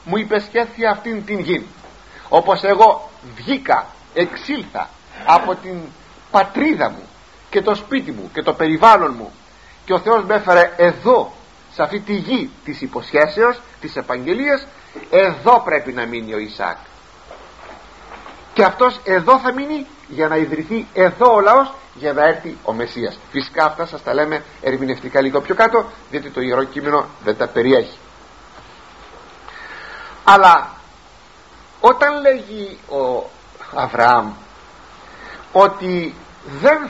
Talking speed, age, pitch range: 130 wpm, 50-69, 150-245 Hz